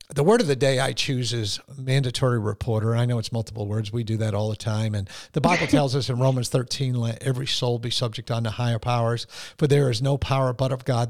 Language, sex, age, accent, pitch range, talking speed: English, male, 50-69, American, 115-140 Hz, 245 wpm